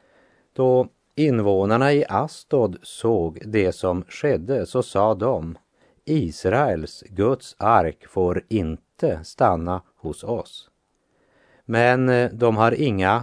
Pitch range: 90-115 Hz